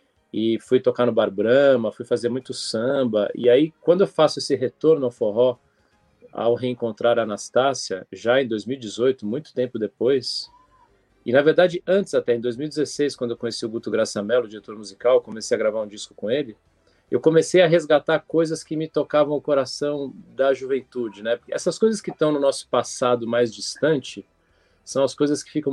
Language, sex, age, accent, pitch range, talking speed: Portuguese, male, 40-59, Brazilian, 120-150 Hz, 185 wpm